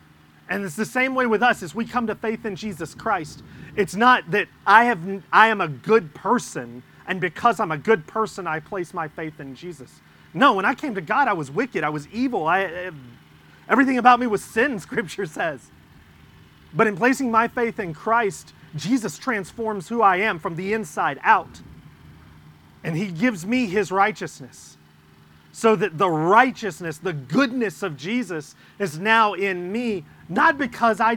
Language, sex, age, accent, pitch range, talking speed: English, male, 30-49, American, 165-235 Hz, 185 wpm